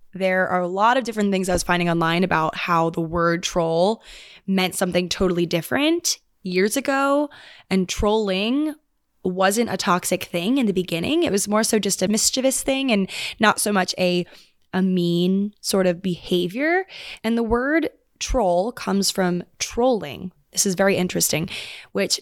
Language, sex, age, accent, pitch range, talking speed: English, female, 20-39, American, 180-225 Hz, 165 wpm